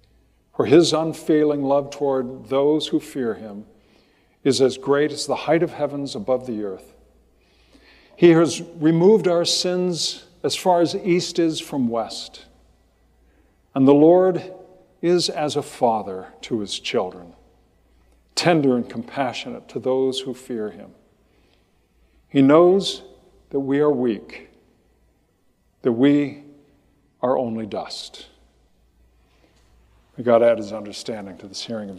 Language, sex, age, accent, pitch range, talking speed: English, male, 50-69, American, 90-150 Hz, 130 wpm